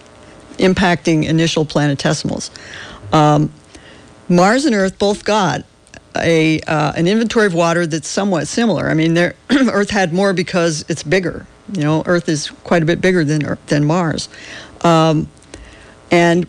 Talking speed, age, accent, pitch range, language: 150 wpm, 50-69, American, 160-195 Hz, English